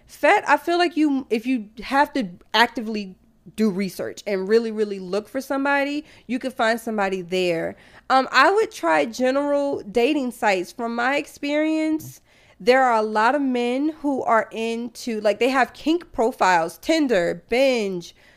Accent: American